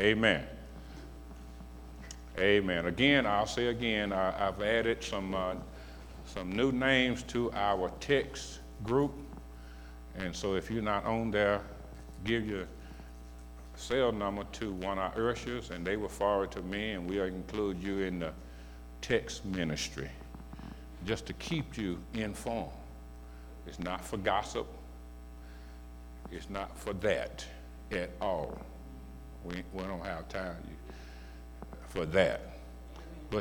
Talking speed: 125 wpm